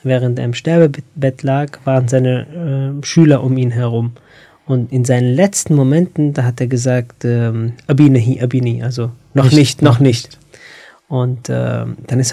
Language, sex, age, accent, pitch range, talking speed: German, male, 20-39, German, 125-140 Hz, 160 wpm